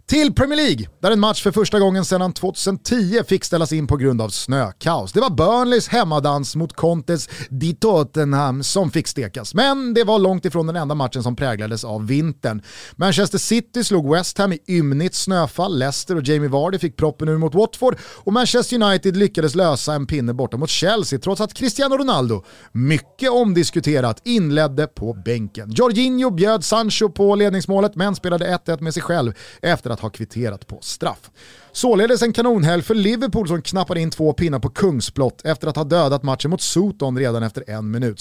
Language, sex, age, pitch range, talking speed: Swedish, male, 30-49, 135-210 Hz, 185 wpm